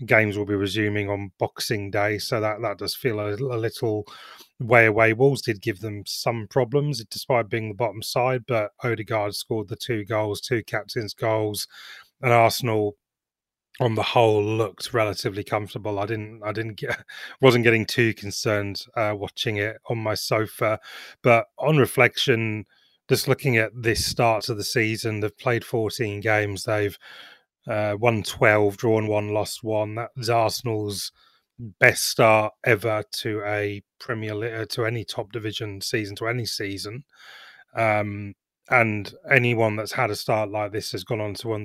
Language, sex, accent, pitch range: English, male, British, 105-120 Hz